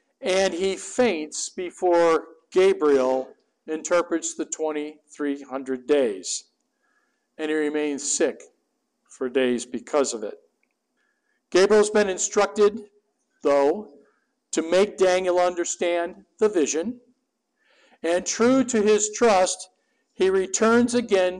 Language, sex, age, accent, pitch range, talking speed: English, male, 50-69, American, 160-225 Hz, 105 wpm